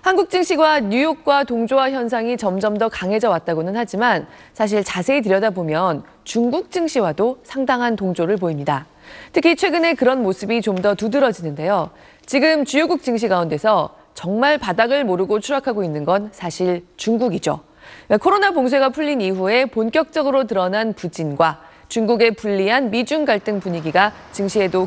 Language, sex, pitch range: Korean, female, 180-270 Hz